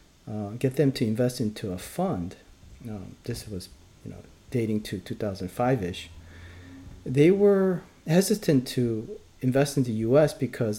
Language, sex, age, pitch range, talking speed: English, male, 40-59, 100-135 Hz, 140 wpm